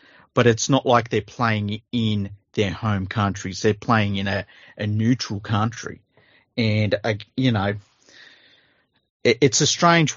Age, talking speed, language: 30-49, 150 wpm, English